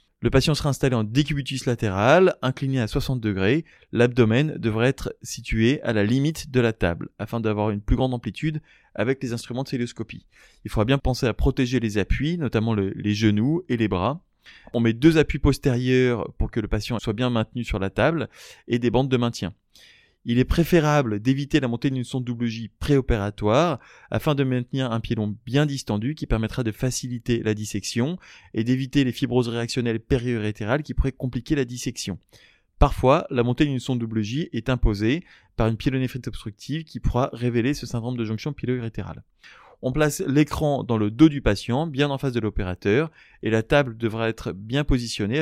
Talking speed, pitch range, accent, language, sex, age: 190 wpm, 110-135 Hz, French, French, male, 20-39